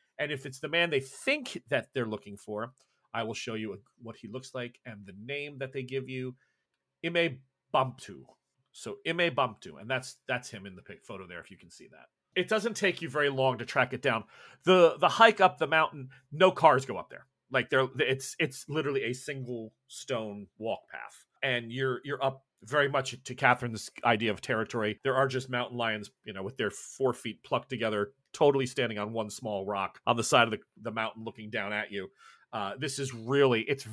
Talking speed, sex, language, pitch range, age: 210 wpm, male, English, 110-140 Hz, 40-59